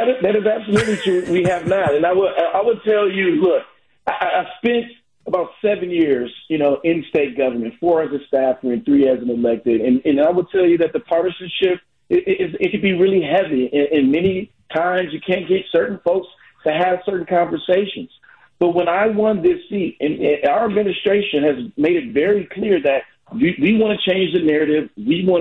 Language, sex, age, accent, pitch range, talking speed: English, male, 50-69, American, 145-200 Hz, 210 wpm